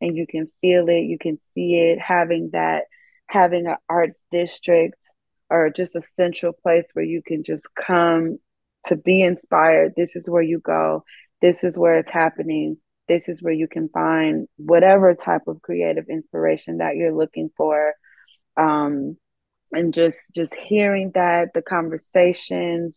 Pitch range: 155-180 Hz